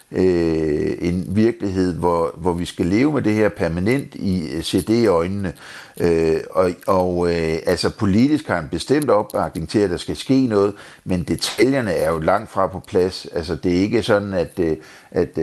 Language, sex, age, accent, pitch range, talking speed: Danish, male, 60-79, native, 85-110 Hz, 170 wpm